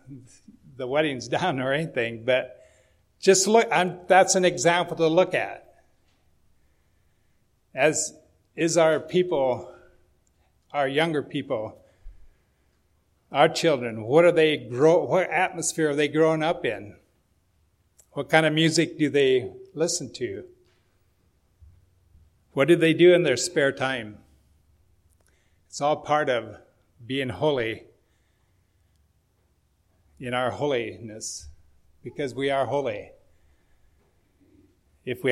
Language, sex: English, male